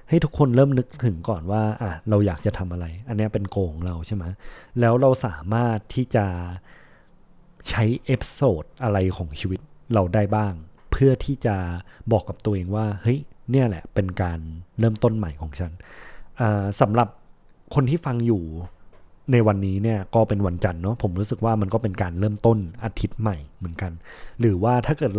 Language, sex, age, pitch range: Thai, male, 20-39, 95-120 Hz